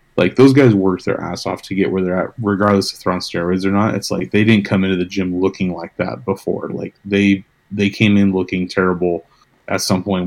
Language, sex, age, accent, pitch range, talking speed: English, male, 30-49, American, 90-100 Hz, 235 wpm